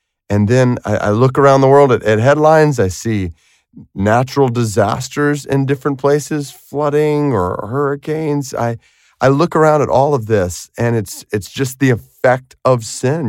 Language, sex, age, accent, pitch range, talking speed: English, male, 30-49, American, 100-140 Hz, 165 wpm